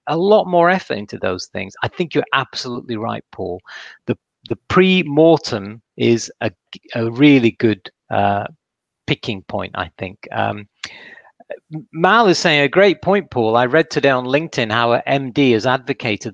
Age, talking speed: 40-59, 160 wpm